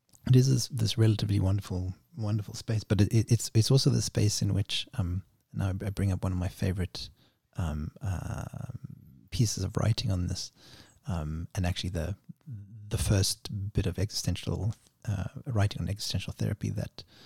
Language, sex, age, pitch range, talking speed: English, male, 30-49, 95-120 Hz, 170 wpm